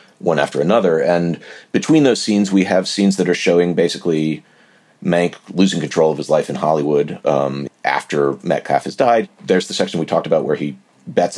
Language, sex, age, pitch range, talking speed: English, male, 40-59, 75-85 Hz, 190 wpm